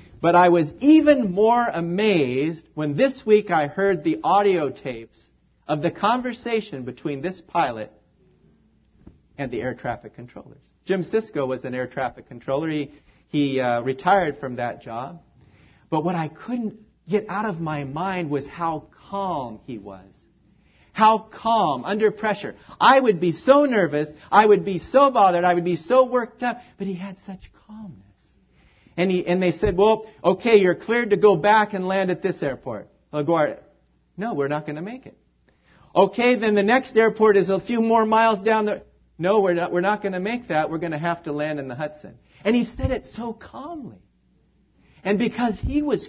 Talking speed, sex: 180 wpm, male